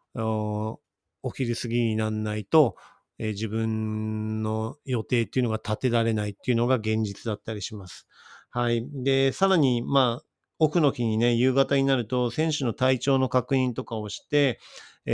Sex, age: male, 40-59